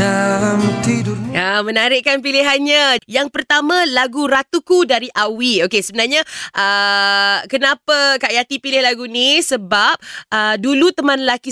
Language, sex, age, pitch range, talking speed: Malay, female, 20-39, 200-275 Hz, 130 wpm